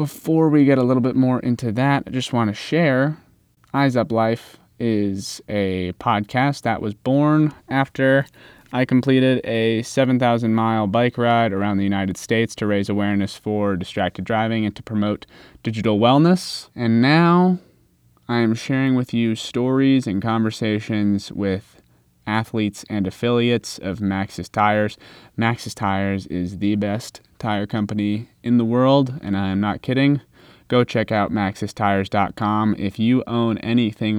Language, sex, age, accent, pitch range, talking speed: English, male, 20-39, American, 100-120 Hz, 150 wpm